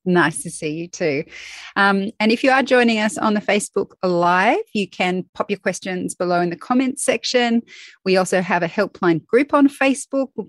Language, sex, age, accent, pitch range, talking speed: English, female, 30-49, Australian, 175-235 Hz, 200 wpm